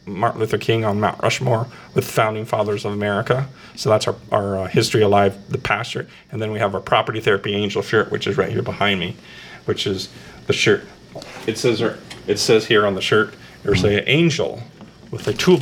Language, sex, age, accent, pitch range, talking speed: English, male, 40-59, American, 105-125 Hz, 210 wpm